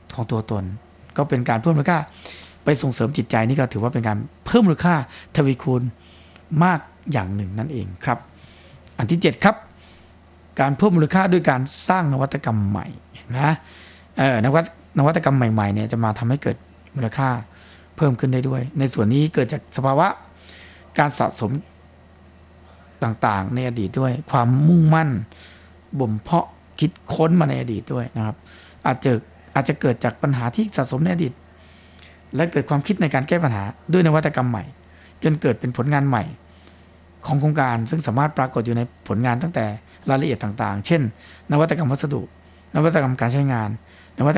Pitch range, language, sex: 95-145 Hz, Thai, male